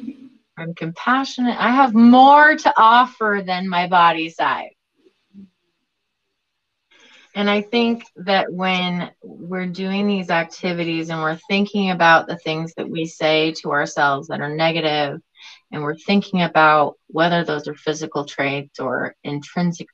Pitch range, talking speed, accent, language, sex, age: 160-265 Hz, 135 wpm, American, English, female, 20-39